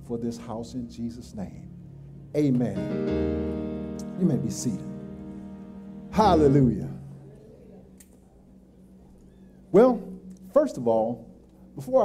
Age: 50-69